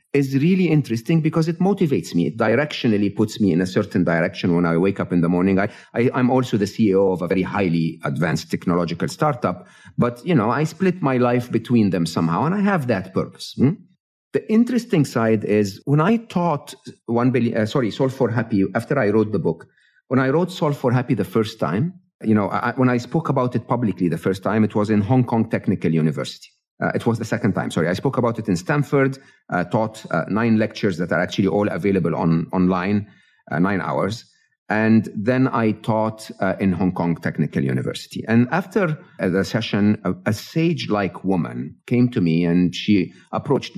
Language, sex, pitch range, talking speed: English, male, 95-135 Hz, 205 wpm